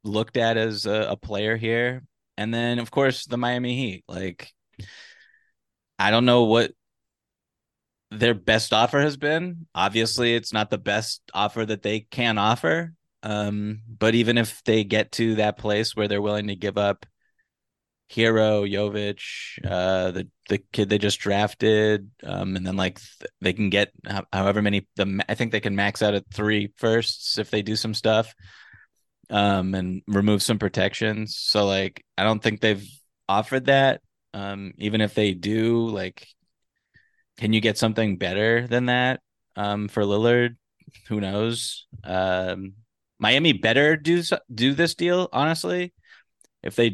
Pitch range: 100-115 Hz